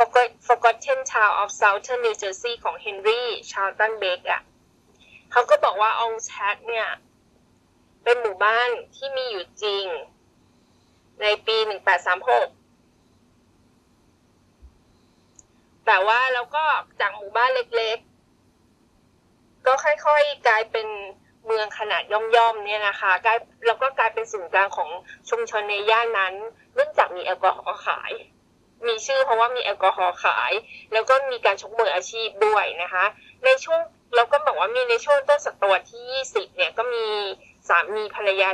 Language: Thai